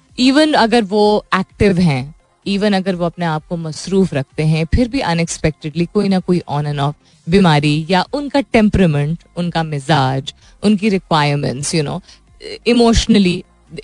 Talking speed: 145 wpm